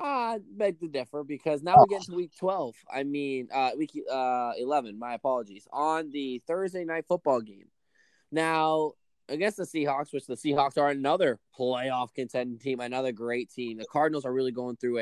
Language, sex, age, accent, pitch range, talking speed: English, male, 10-29, American, 130-175 Hz, 185 wpm